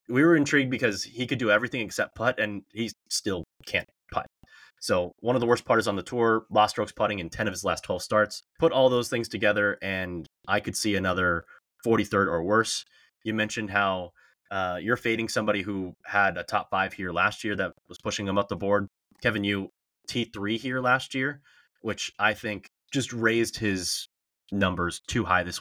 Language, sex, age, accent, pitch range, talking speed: English, male, 20-39, American, 95-120 Hz, 200 wpm